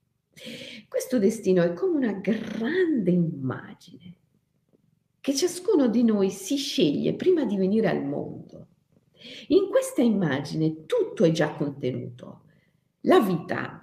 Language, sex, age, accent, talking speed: Italian, female, 50-69, native, 115 wpm